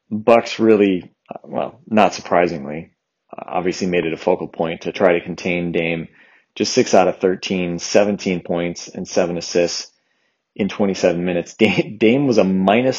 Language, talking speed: English, 155 wpm